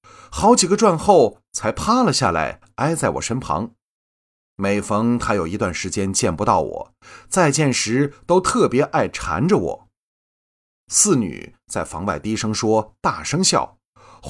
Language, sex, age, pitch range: Chinese, male, 30-49, 90-130 Hz